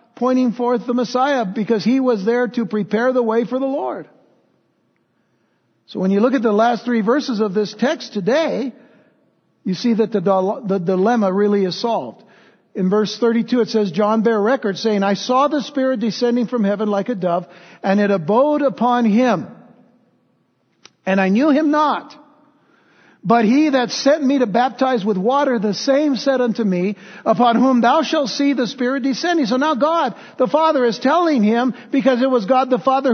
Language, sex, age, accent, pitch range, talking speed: English, male, 60-79, American, 215-270 Hz, 185 wpm